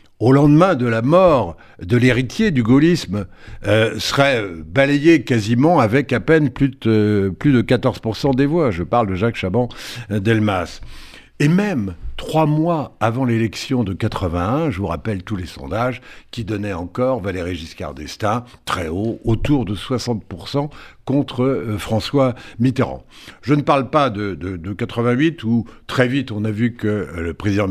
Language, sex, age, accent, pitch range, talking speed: French, male, 70-89, French, 100-135 Hz, 160 wpm